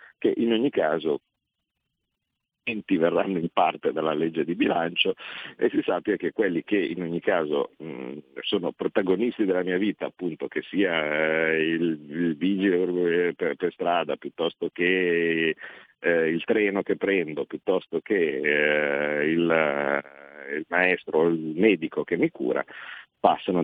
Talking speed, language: 140 wpm, Italian